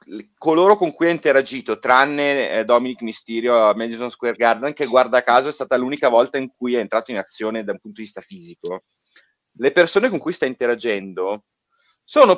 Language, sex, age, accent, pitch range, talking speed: Italian, male, 30-49, native, 125-180 Hz, 190 wpm